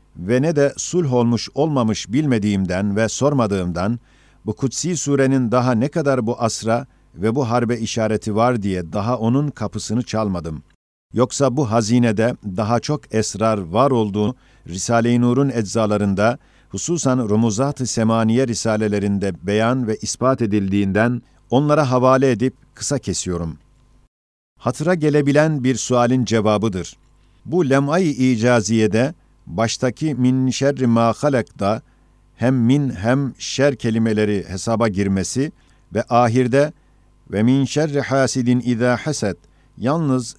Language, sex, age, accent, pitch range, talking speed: Turkish, male, 50-69, native, 110-135 Hz, 120 wpm